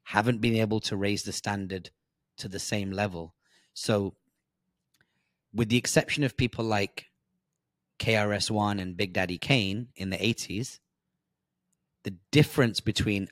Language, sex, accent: English, male, British